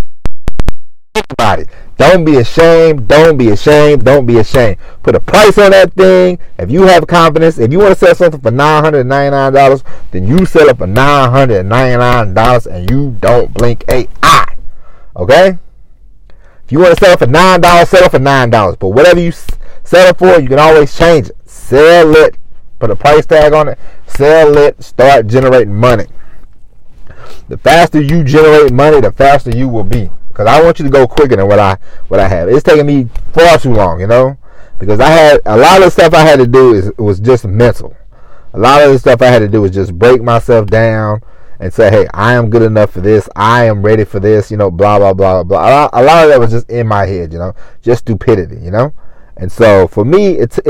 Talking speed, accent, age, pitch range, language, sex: 215 wpm, American, 30-49, 110-155 Hz, English, male